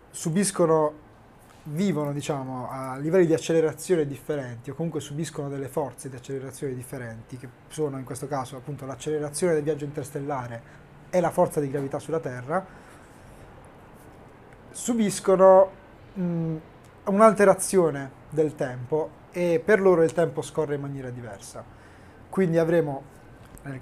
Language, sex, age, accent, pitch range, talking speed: Italian, male, 20-39, native, 130-175 Hz, 125 wpm